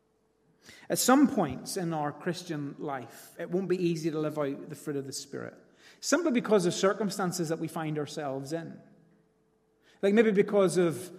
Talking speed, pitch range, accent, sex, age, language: 170 wpm, 155-190 Hz, British, male, 30-49, English